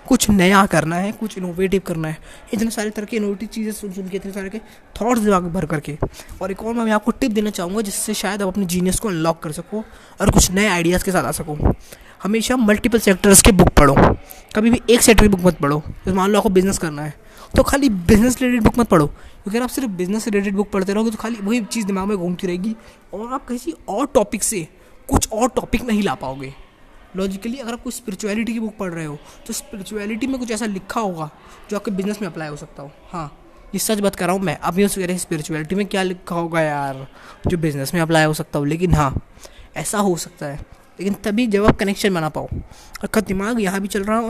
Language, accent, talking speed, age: Hindi, native, 240 wpm, 20-39